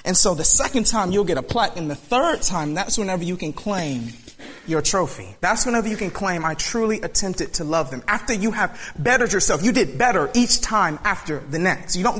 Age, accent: 30-49, American